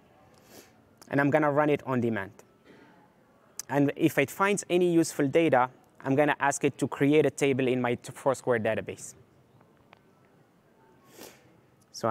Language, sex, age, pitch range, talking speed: English, male, 20-39, 125-155 Hz, 135 wpm